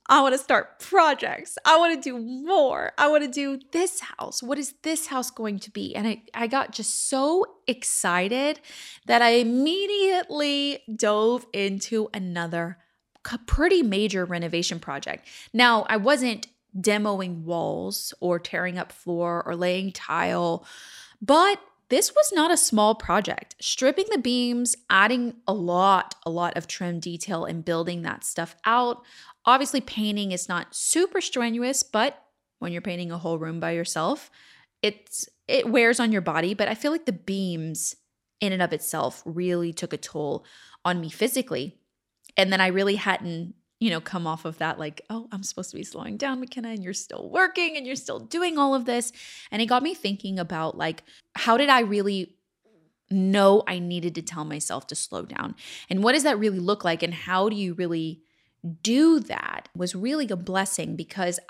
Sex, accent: female, American